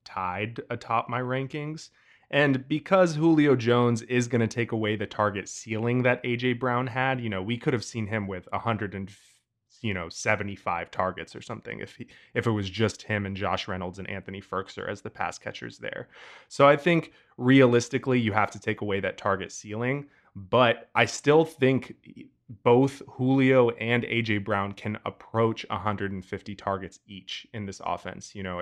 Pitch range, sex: 100-125 Hz, male